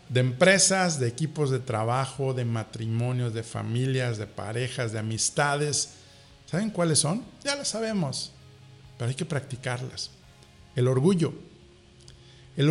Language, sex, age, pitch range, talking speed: Spanish, male, 50-69, 125-180 Hz, 125 wpm